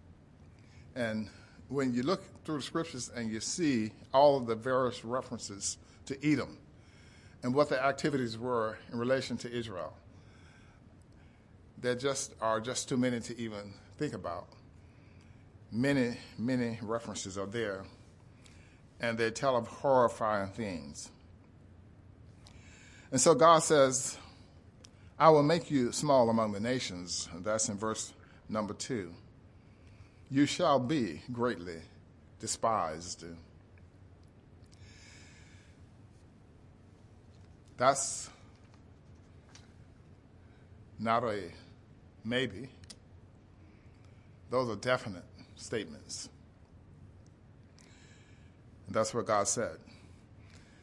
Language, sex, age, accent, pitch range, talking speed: English, male, 50-69, American, 95-125 Hz, 95 wpm